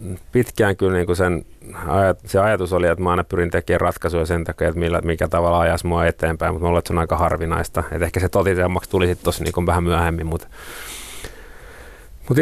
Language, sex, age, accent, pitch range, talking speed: Finnish, male, 30-49, native, 85-95 Hz, 195 wpm